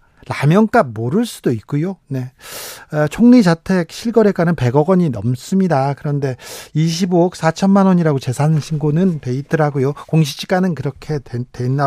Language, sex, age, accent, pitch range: Korean, male, 40-59, native, 140-195 Hz